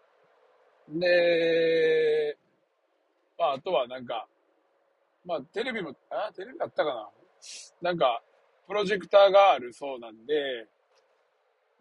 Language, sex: Japanese, male